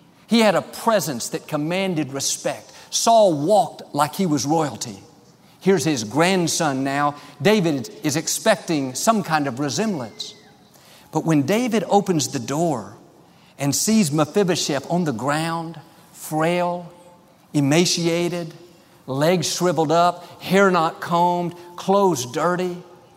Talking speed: 120 wpm